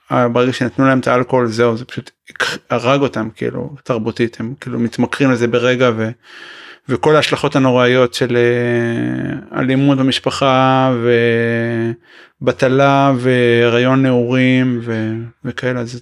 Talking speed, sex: 115 wpm, male